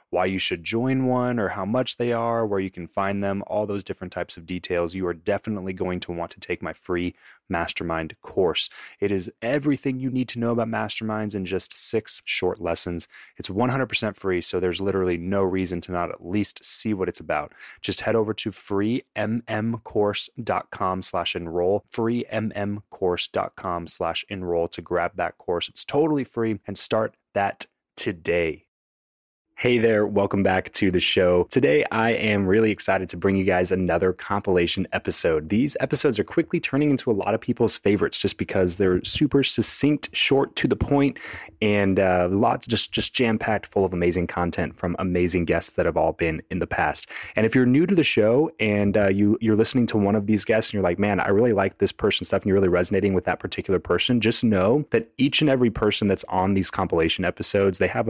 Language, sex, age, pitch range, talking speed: English, male, 30-49, 90-115 Hz, 195 wpm